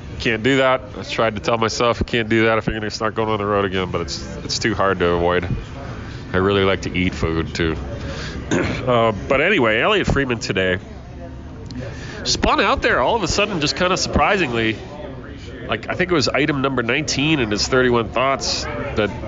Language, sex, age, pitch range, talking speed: English, male, 30-49, 100-140 Hz, 205 wpm